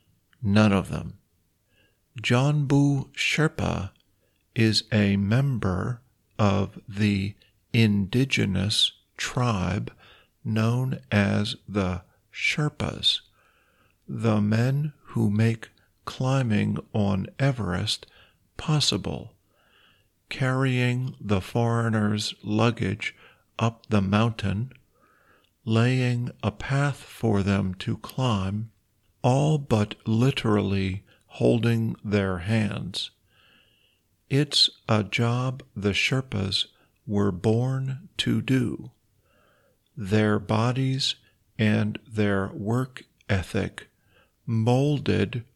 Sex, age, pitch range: male, 50-69, 100-125 Hz